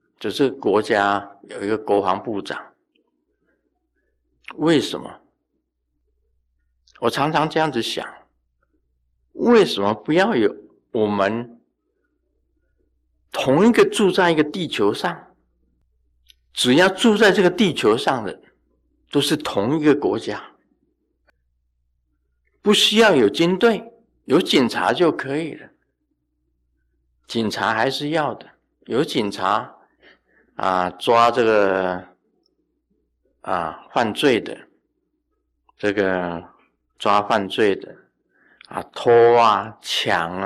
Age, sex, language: 50-69, male, Chinese